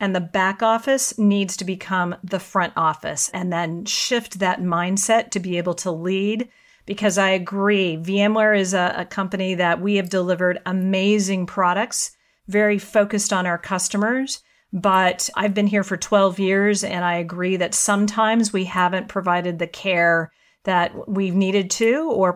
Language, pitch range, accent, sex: English, 180-210 Hz, American, female